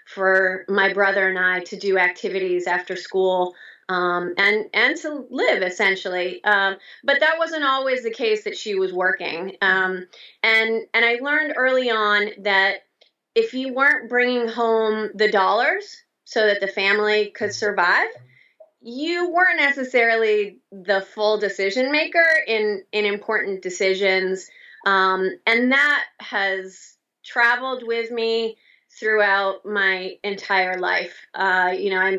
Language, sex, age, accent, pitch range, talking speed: English, female, 30-49, American, 190-245 Hz, 135 wpm